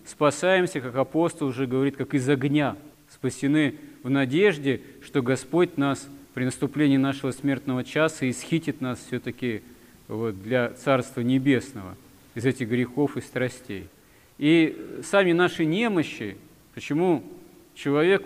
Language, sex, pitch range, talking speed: Russian, male, 130-150 Hz, 120 wpm